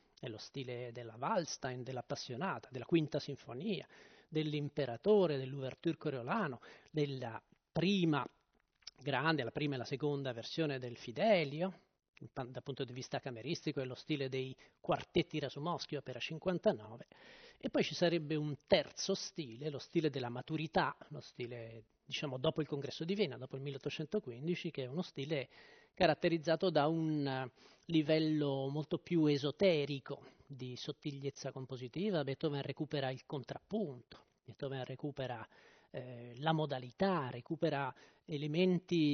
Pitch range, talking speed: 135-170 Hz, 125 wpm